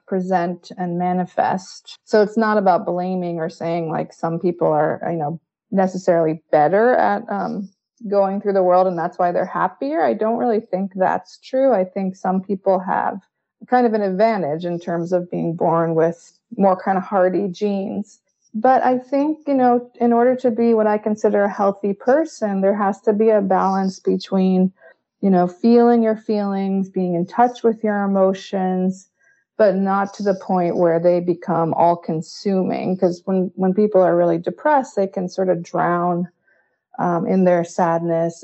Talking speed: 180 wpm